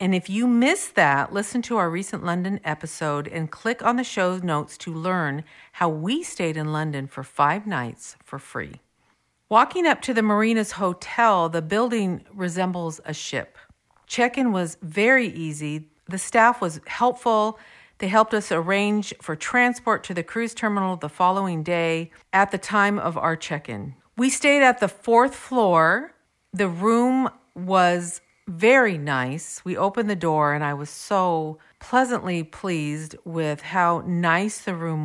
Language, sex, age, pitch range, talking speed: English, female, 50-69, 160-220 Hz, 160 wpm